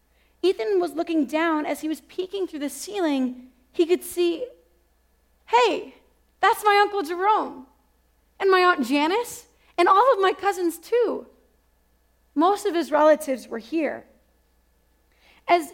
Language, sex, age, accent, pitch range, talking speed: English, female, 30-49, American, 255-355 Hz, 135 wpm